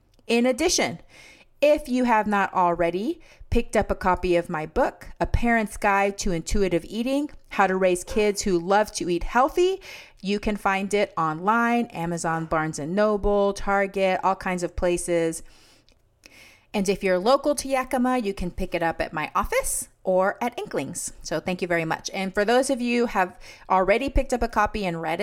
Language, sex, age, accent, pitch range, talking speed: English, female, 30-49, American, 180-230 Hz, 190 wpm